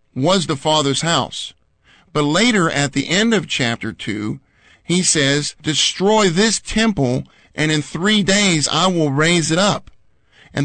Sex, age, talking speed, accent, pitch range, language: male, 50-69, 150 wpm, American, 140-190 Hz, English